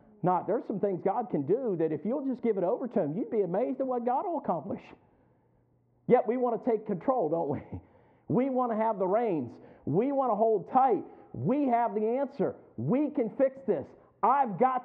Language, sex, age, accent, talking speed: English, male, 50-69, American, 215 wpm